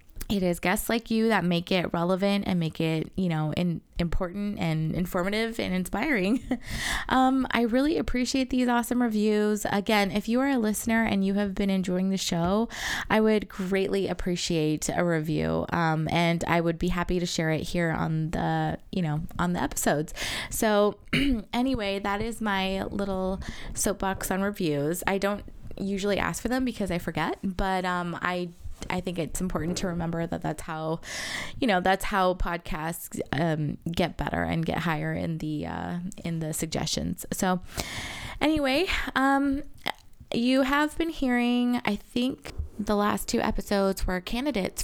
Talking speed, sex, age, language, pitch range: 165 wpm, female, 20-39, English, 170-215 Hz